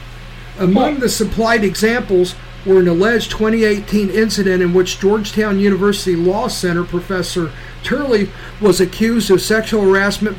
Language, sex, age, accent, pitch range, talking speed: English, male, 50-69, American, 170-215 Hz, 125 wpm